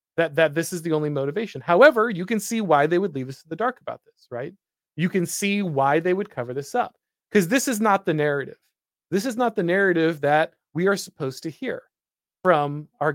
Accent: American